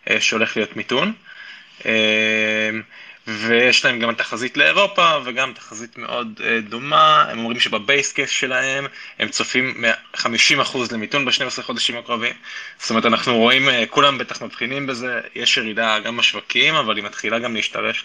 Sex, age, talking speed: male, 20-39, 135 wpm